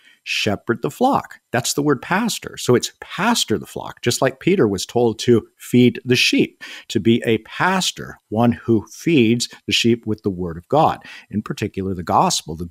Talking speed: 190 wpm